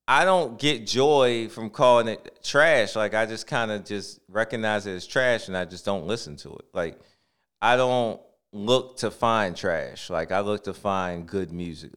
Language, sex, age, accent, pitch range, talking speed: English, male, 30-49, American, 100-130 Hz, 195 wpm